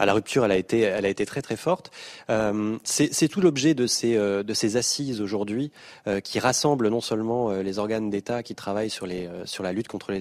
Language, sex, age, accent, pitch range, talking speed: French, male, 30-49, French, 100-130 Hz, 245 wpm